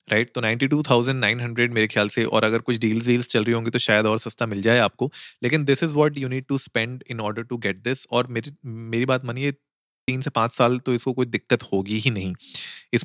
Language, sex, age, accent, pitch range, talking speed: Hindi, male, 30-49, native, 110-125 Hz, 230 wpm